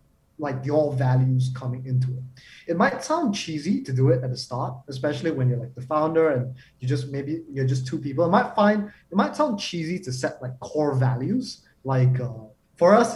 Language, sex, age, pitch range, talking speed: English, male, 20-39, 130-160 Hz, 210 wpm